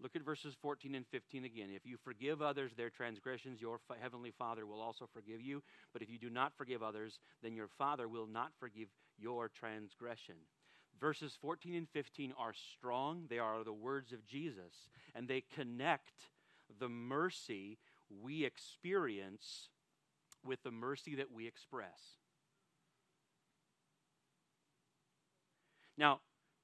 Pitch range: 120-170 Hz